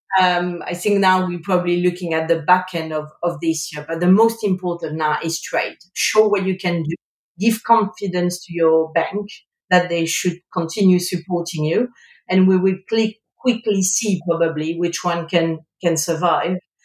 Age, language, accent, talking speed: 40-59, English, French, 180 wpm